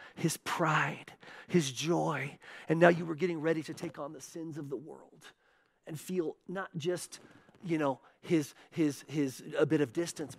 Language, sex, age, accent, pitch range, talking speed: English, male, 40-59, American, 165-210 Hz, 180 wpm